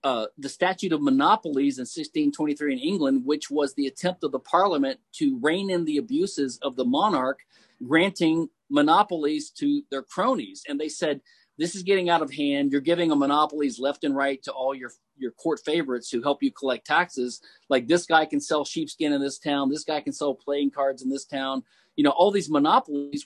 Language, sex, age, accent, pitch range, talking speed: English, male, 40-59, American, 145-210 Hz, 205 wpm